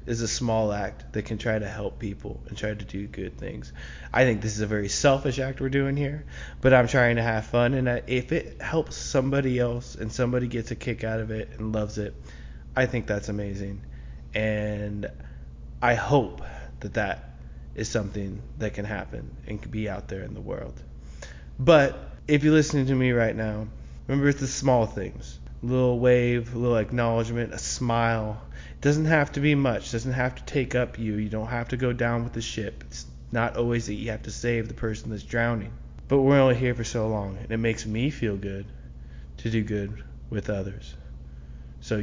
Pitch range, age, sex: 100-120 Hz, 20-39, male